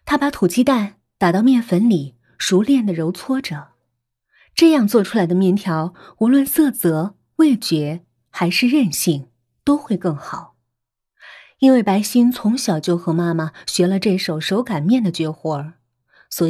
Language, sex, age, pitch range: Chinese, female, 20-39, 155-230 Hz